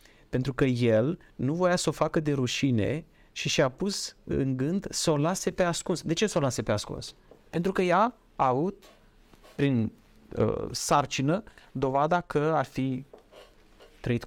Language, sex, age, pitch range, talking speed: Romanian, male, 30-49, 115-150 Hz, 165 wpm